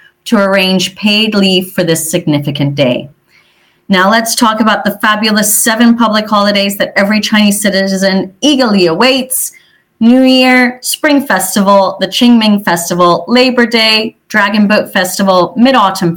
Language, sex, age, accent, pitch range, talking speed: English, female, 30-49, American, 185-240 Hz, 135 wpm